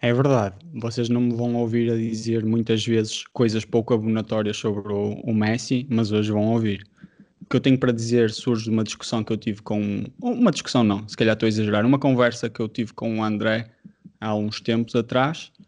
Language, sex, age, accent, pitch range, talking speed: Portuguese, male, 20-39, Brazilian, 110-140 Hz, 215 wpm